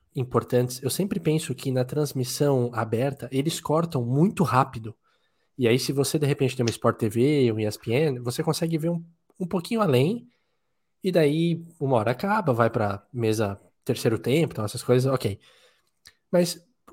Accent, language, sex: Brazilian, Portuguese, male